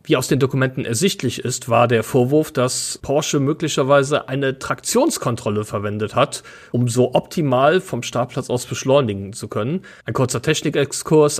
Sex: male